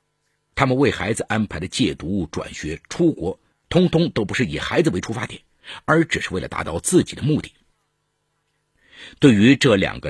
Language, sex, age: Chinese, male, 50-69